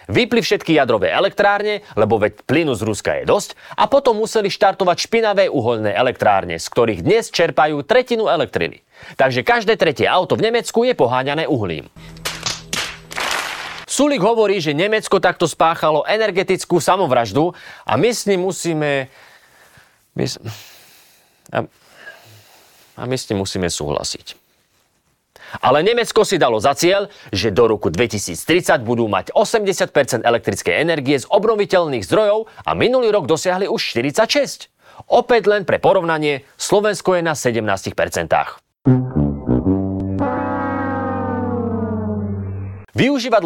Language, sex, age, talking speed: Slovak, male, 30-49, 120 wpm